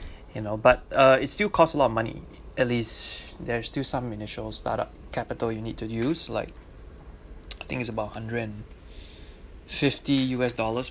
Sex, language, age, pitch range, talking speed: male, English, 20-39, 105-125 Hz, 180 wpm